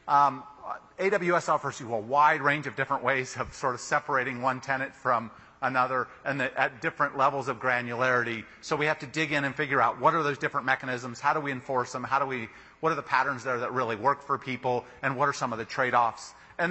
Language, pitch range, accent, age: English, 125-160 Hz, American, 40-59